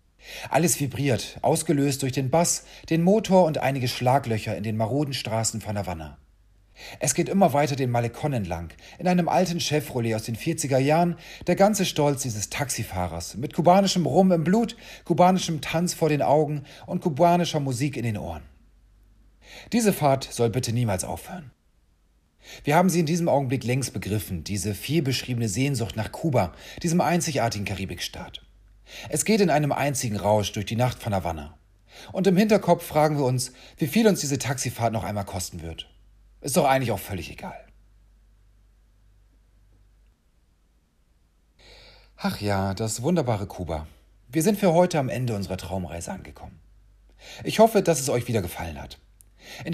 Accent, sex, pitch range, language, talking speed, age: German, male, 95-155 Hz, German, 155 wpm, 40-59